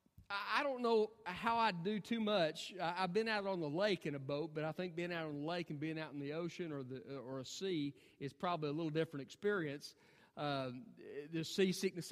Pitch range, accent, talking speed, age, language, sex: 155-220 Hz, American, 225 wpm, 40-59, English, male